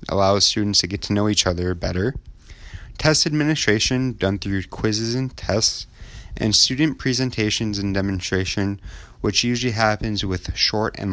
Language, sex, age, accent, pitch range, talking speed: English, male, 20-39, American, 90-115 Hz, 145 wpm